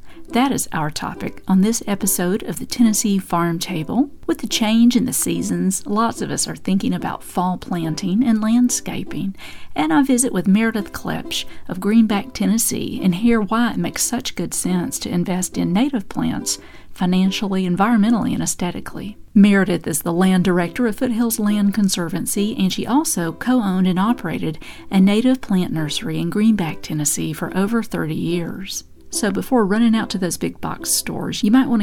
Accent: American